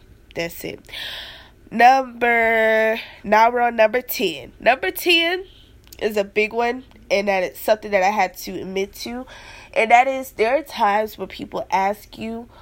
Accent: American